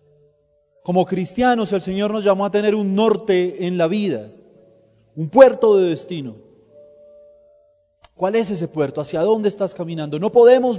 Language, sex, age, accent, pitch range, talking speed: Spanish, male, 30-49, Colombian, 150-200 Hz, 150 wpm